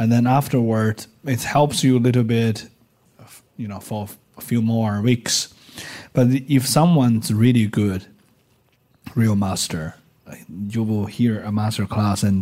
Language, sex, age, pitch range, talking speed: English, male, 20-39, 100-115 Hz, 145 wpm